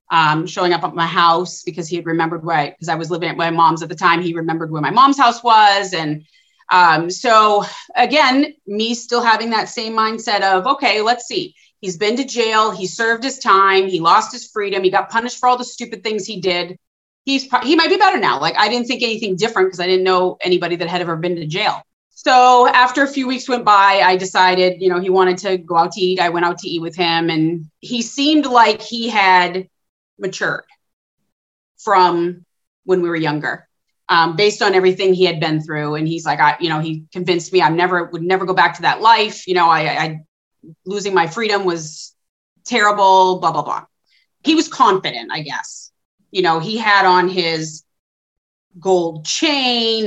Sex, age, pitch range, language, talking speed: female, 30-49, 170-230 Hz, English, 210 wpm